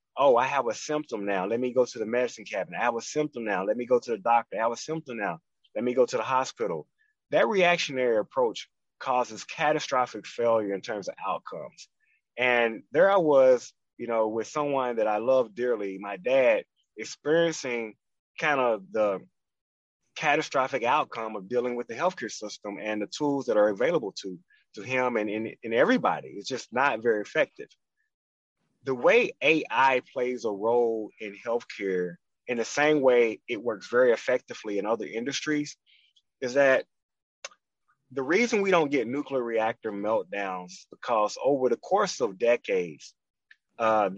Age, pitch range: 30-49, 110-175 Hz